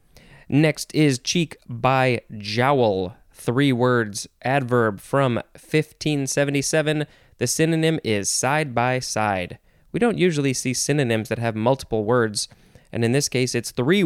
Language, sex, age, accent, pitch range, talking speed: English, male, 20-39, American, 115-150 Hz, 130 wpm